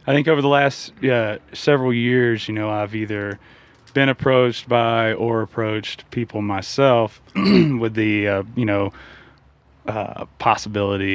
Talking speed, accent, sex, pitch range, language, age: 140 wpm, American, male, 100-115 Hz, English, 20-39